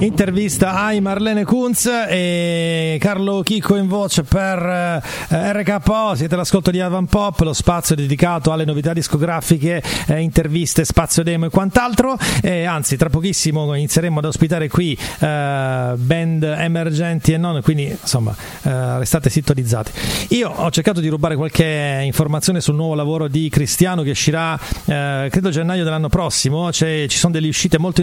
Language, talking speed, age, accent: Italian, 155 wpm, 40-59, native